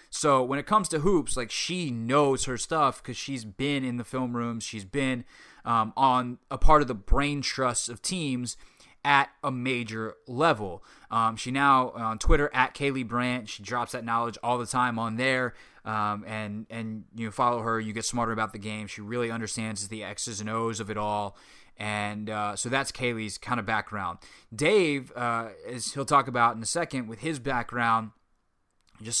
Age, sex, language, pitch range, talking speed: 20-39, male, English, 110-130 Hz, 195 wpm